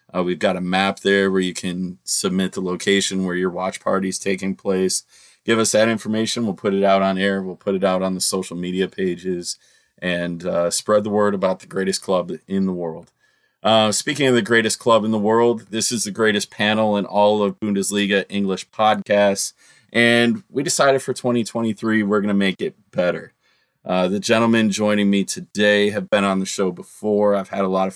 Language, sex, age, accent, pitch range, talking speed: English, male, 20-39, American, 95-115 Hz, 210 wpm